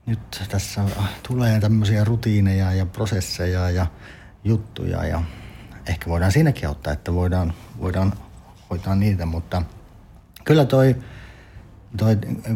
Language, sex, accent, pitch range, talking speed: Finnish, male, native, 85-105 Hz, 115 wpm